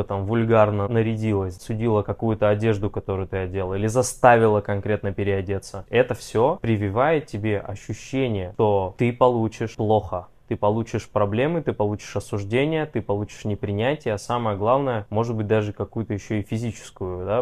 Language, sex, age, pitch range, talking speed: Russian, male, 20-39, 100-120 Hz, 145 wpm